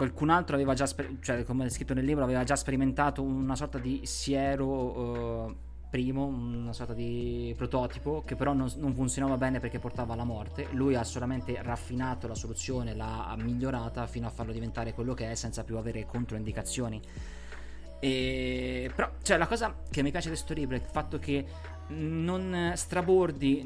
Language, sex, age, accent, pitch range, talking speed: Italian, male, 20-39, native, 120-145 Hz, 180 wpm